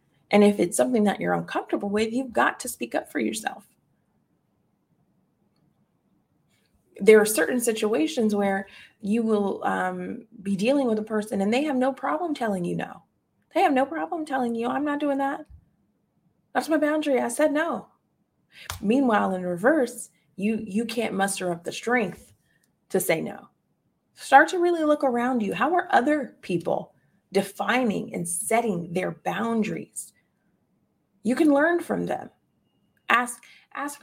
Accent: American